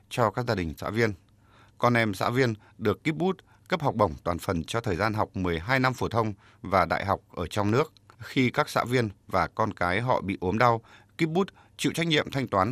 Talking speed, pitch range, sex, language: 225 wpm, 100-125 Hz, male, Vietnamese